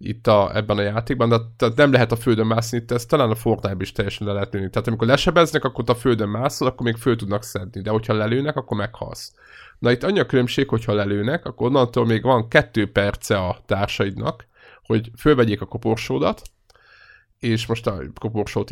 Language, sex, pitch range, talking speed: Hungarian, male, 105-125 Hz, 190 wpm